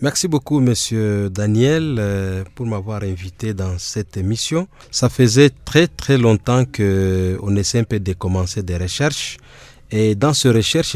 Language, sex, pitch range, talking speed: French, male, 110-145 Hz, 150 wpm